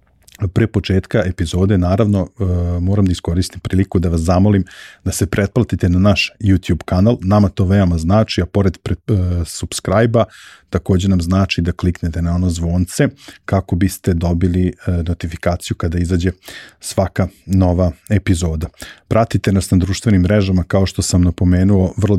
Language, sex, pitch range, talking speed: English, male, 90-100 Hz, 145 wpm